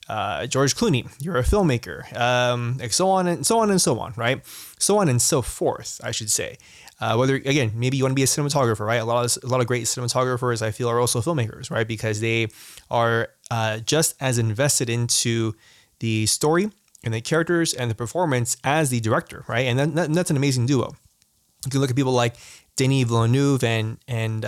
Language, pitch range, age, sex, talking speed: English, 115-140 Hz, 20-39, male, 215 wpm